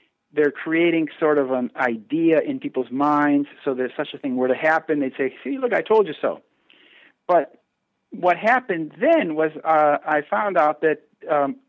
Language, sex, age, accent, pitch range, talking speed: English, male, 50-69, American, 140-190 Hz, 185 wpm